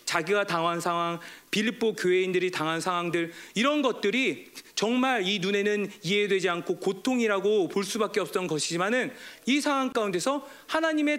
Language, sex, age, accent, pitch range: Korean, male, 40-59, native, 200-285 Hz